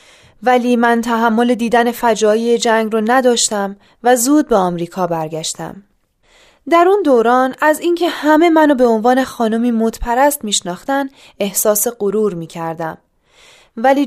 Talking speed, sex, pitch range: 125 wpm, female, 210-290 Hz